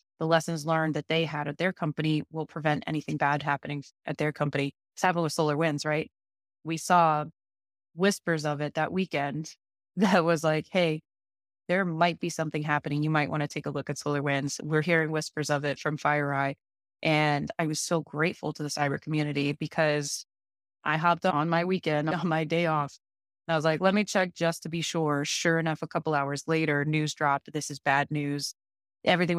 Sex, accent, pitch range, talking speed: female, American, 145-160 Hz, 195 wpm